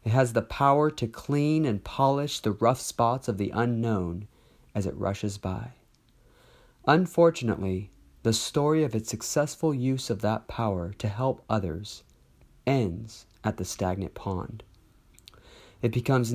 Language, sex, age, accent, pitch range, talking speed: English, male, 40-59, American, 100-135 Hz, 140 wpm